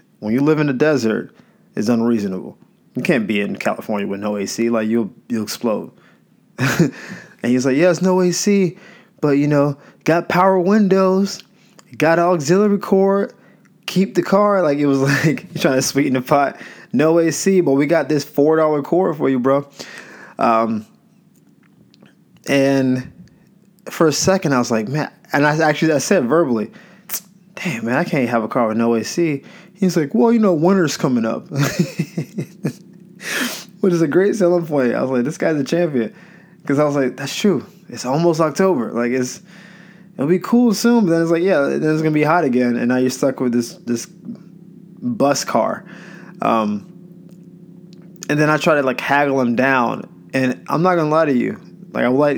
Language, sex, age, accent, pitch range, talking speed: English, male, 20-39, American, 130-185 Hz, 185 wpm